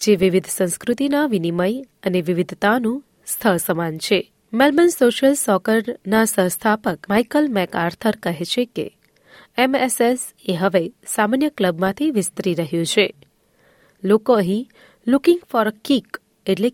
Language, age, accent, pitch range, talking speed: Gujarati, 30-49, native, 185-245 Hz, 110 wpm